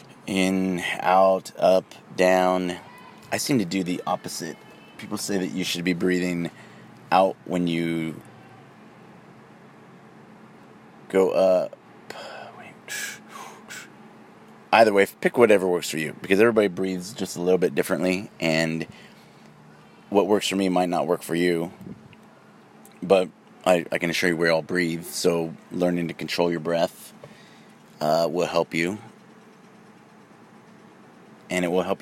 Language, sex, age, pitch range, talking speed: English, male, 30-49, 85-95 Hz, 130 wpm